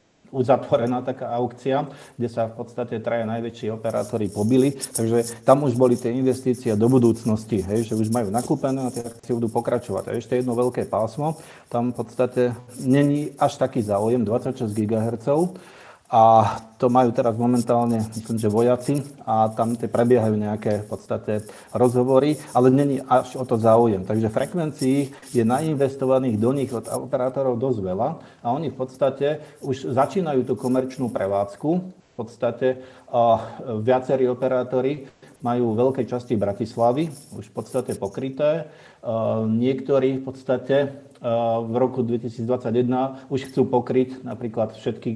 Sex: male